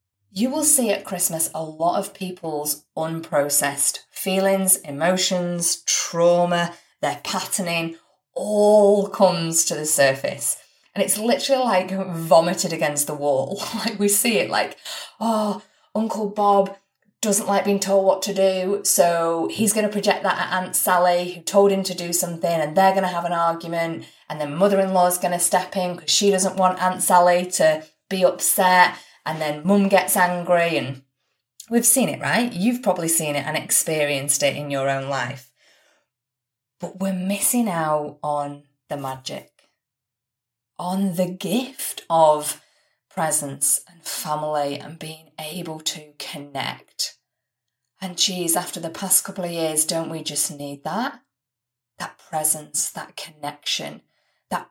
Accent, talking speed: British, 150 wpm